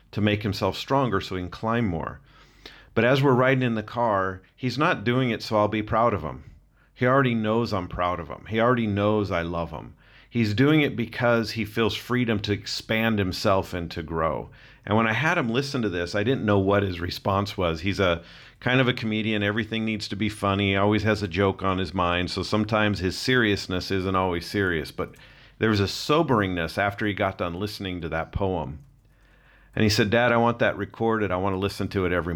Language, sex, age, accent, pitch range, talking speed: English, male, 40-59, American, 95-115 Hz, 225 wpm